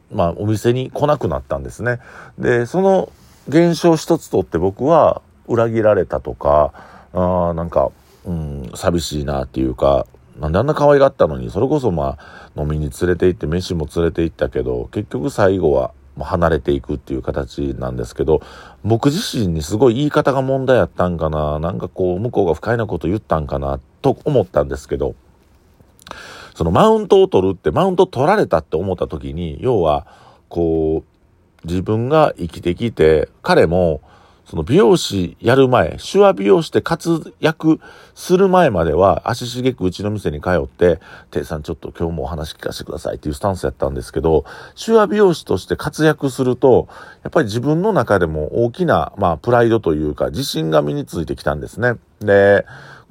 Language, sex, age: Japanese, male, 50-69